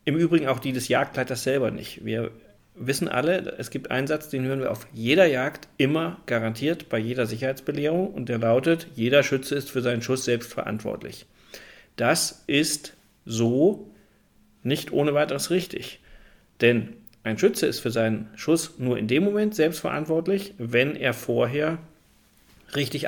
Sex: male